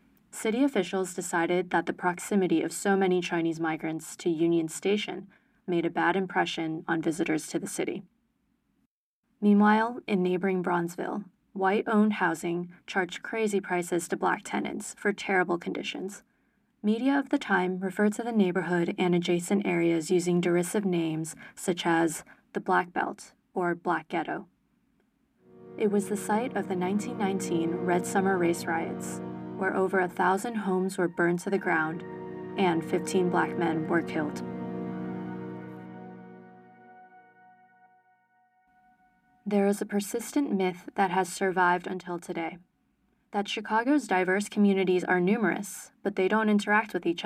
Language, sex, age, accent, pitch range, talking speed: English, female, 20-39, American, 170-205 Hz, 140 wpm